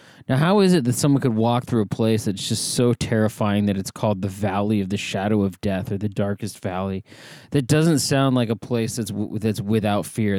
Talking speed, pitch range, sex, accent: 230 wpm, 105-135 Hz, male, American